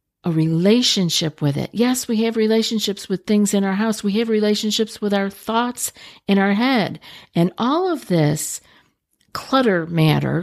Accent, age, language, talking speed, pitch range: American, 50-69, English, 160 wpm, 160-215 Hz